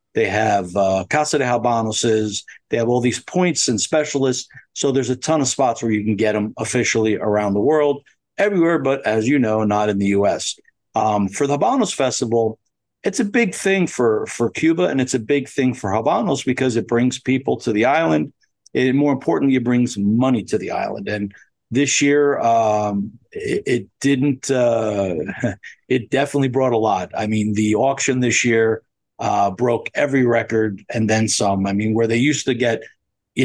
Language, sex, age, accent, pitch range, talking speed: English, male, 50-69, American, 110-135 Hz, 190 wpm